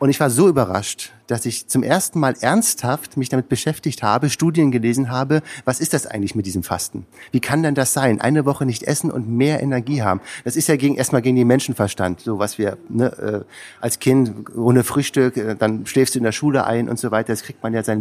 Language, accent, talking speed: German, German, 230 wpm